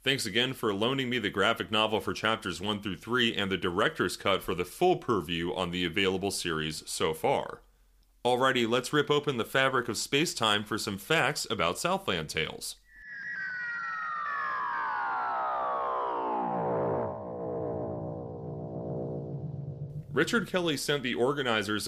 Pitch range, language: 100-145 Hz, English